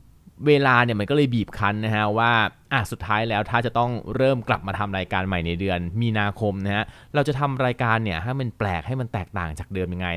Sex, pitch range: male, 100-125 Hz